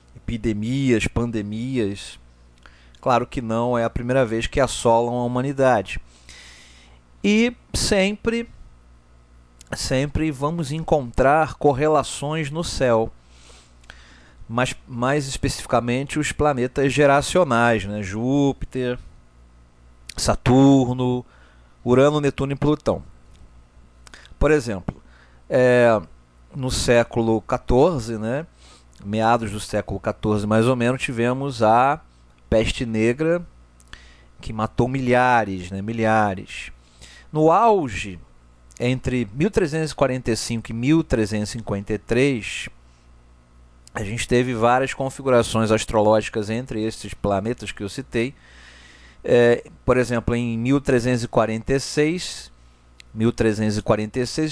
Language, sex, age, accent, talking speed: Portuguese, male, 40-59, Brazilian, 85 wpm